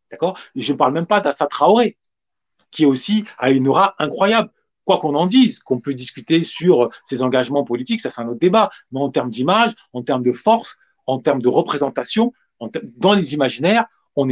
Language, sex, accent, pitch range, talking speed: French, male, French, 135-210 Hz, 205 wpm